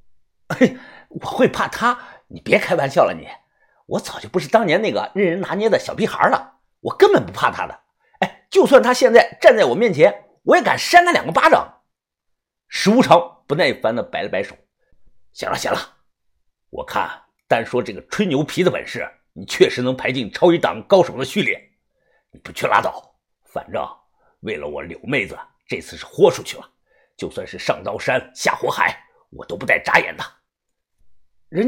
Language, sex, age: Chinese, male, 50-69